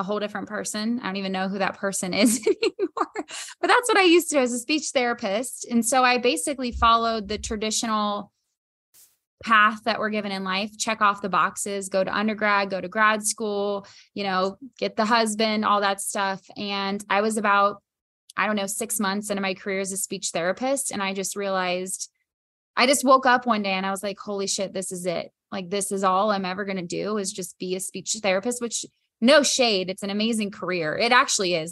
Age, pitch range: 20-39, 190-225 Hz